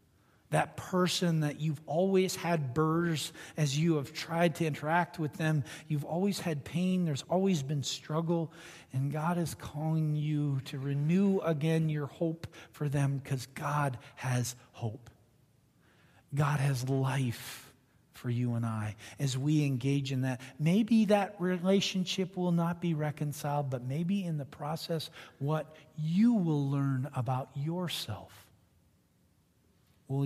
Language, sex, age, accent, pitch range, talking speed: English, male, 40-59, American, 130-160 Hz, 140 wpm